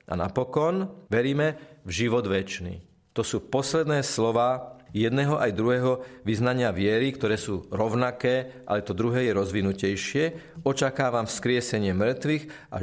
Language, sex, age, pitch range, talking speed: Slovak, male, 40-59, 105-140 Hz, 125 wpm